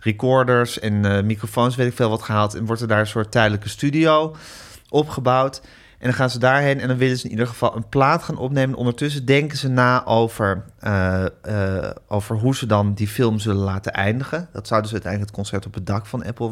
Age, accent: 30-49, Dutch